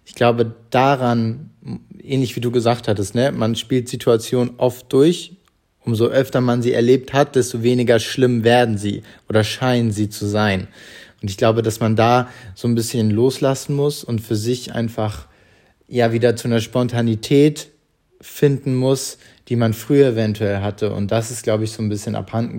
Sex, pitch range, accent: male, 105-125 Hz, German